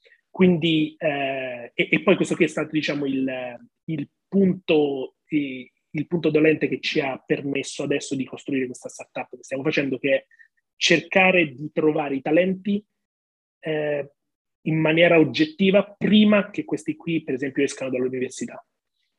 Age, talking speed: 30-49, 140 wpm